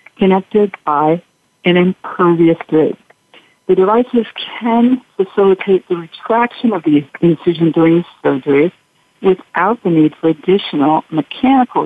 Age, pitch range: 60-79, 160-200 Hz